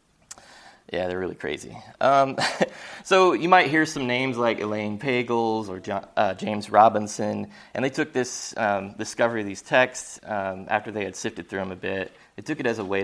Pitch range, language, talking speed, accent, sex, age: 95-120 Hz, English, 195 wpm, American, male, 30-49